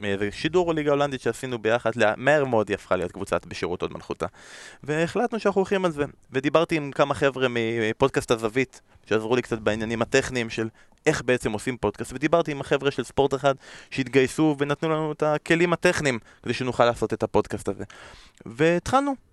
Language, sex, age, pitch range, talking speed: Hebrew, male, 20-39, 115-155 Hz, 170 wpm